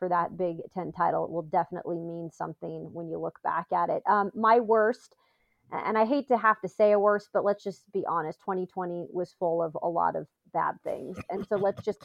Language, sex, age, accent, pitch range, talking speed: English, female, 30-49, American, 180-230 Hz, 225 wpm